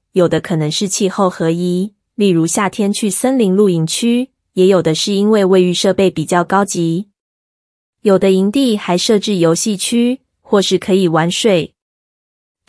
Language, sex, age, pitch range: Chinese, female, 20-39, 175-220 Hz